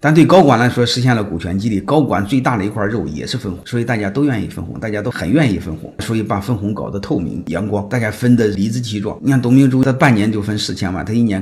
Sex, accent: male, native